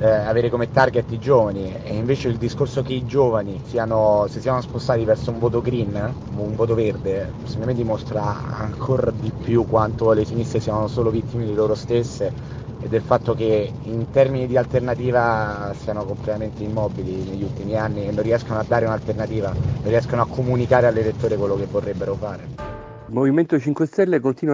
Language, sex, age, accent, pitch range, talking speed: Italian, male, 30-49, native, 110-130 Hz, 180 wpm